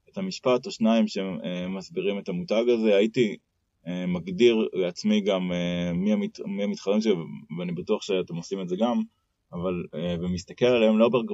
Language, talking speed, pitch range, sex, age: Hebrew, 150 wpm, 95-130 Hz, male, 20-39